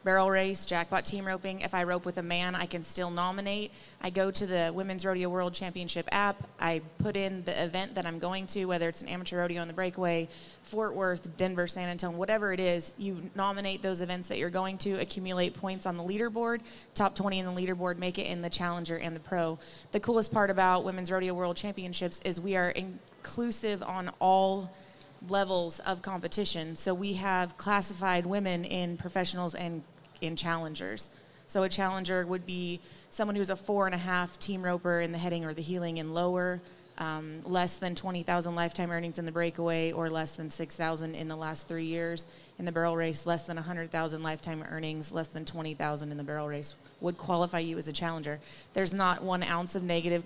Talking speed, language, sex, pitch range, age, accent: 205 wpm, English, female, 170-190 Hz, 20-39, American